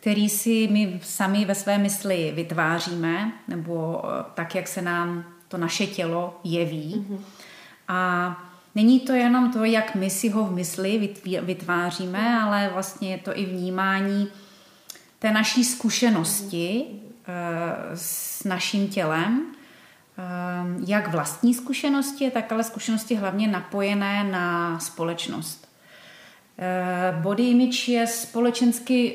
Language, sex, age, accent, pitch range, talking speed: Czech, female, 30-49, native, 180-215 Hz, 115 wpm